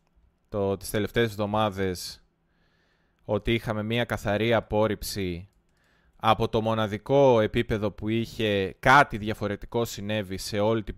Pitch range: 95-115 Hz